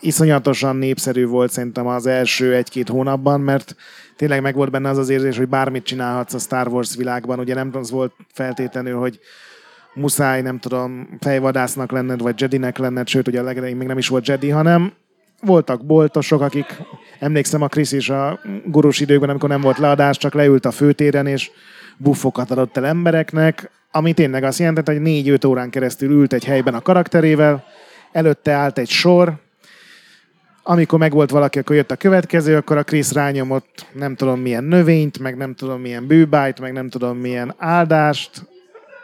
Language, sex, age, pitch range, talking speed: Hungarian, male, 30-49, 130-160 Hz, 175 wpm